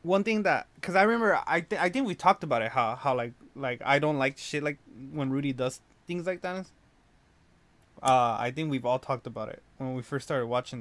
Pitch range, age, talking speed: 125-165 Hz, 20-39, 235 wpm